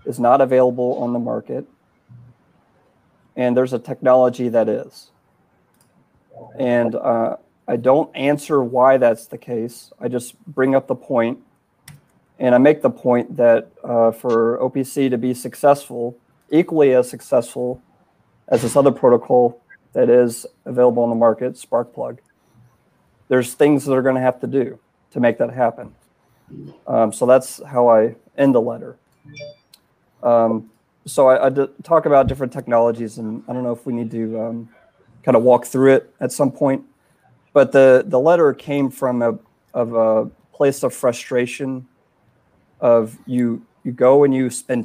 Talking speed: 160 wpm